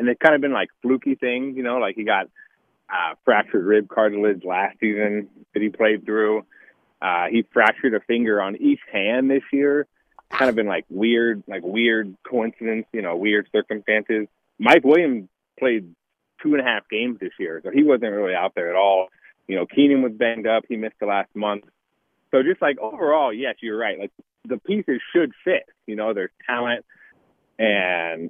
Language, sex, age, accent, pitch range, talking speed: English, male, 30-49, American, 105-135 Hz, 195 wpm